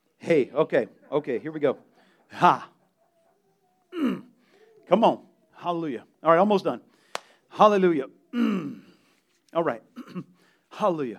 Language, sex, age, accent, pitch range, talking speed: English, male, 40-59, American, 175-230 Hz, 105 wpm